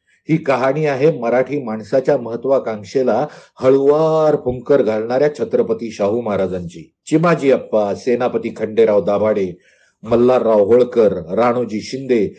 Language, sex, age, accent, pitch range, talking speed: Marathi, male, 50-69, native, 115-155 Hz, 110 wpm